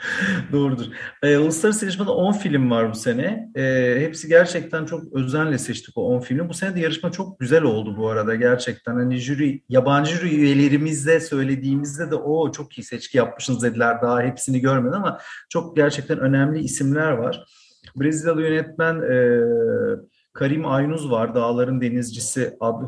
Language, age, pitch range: Turkish, 40-59, 120-155 Hz